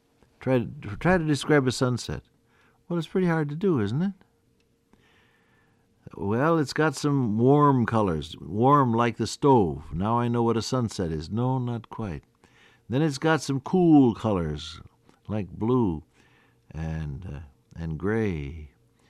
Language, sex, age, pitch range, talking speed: English, male, 60-79, 90-125 Hz, 140 wpm